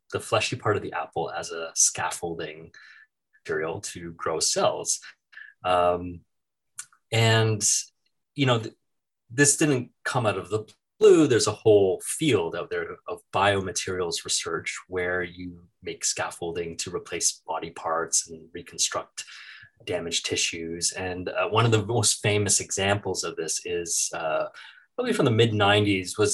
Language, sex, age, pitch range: English, male, 30-49, 90-115 Hz